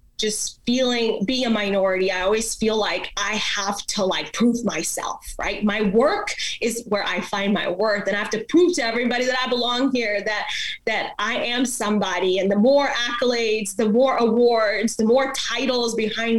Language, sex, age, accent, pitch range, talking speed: English, female, 20-39, American, 195-245 Hz, 185 wpm